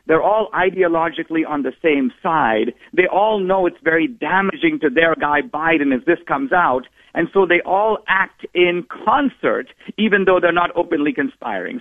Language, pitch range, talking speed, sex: English, 140-190 Hz, 175 wpm, male